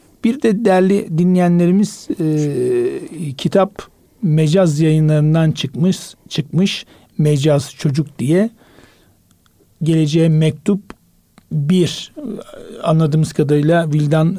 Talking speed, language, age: 80 wpm, Turkish, 60-79